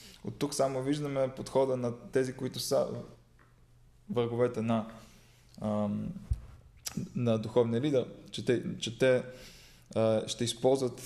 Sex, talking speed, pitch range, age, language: male, 110 wpm, 110-125 Hz, 20-39, Bulgarian